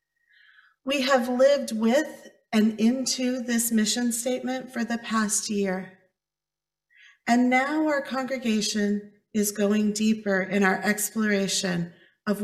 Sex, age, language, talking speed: female, 40-59, English, 115 wpm